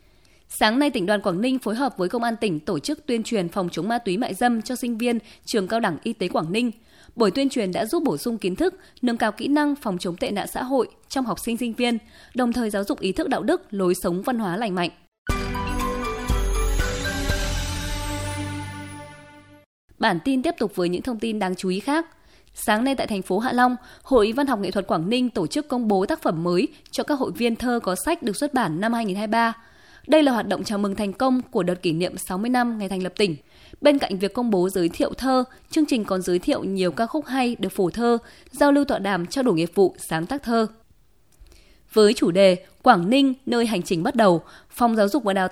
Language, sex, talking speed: Vietnamese, female, 235 wpm